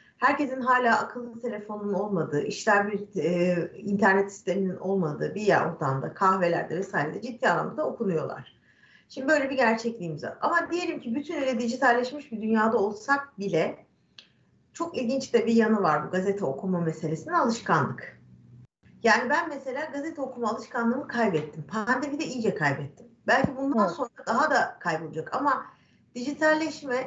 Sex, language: female, Turkish